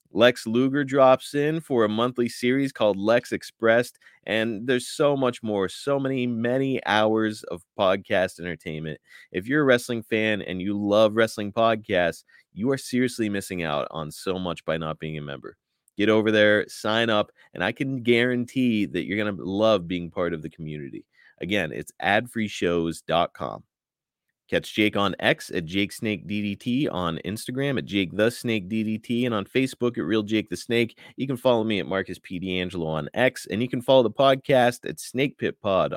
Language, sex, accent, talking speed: English, male, American, 170 wpm